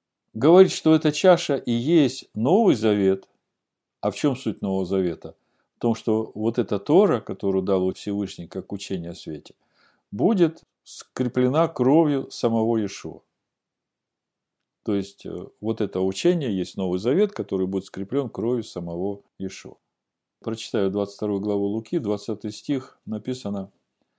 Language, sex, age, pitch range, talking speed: Russian, male, 50-69, 95-125 Hz, 130 wpm